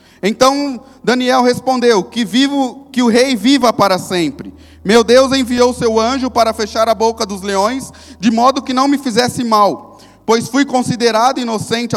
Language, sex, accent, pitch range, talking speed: Portuguese, male, Brazilian, 210-255 Hz, 165 wpm